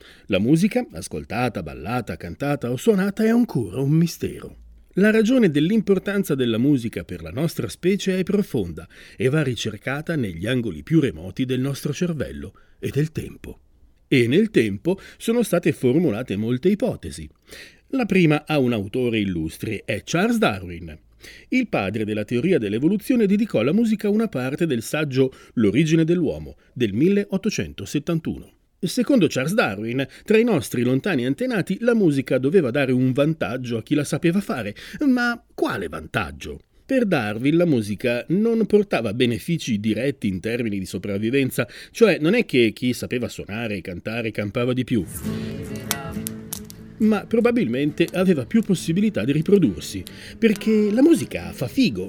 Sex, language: male, Italian